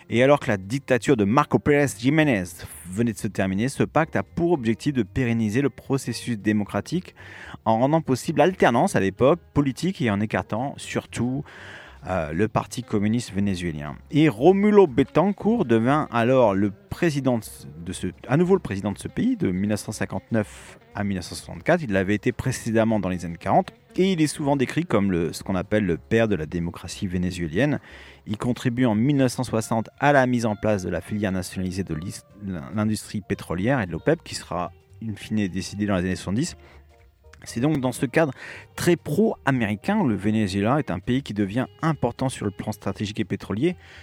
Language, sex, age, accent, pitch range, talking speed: French, male, 30-49, French, 95-130 Hz, 180 wpm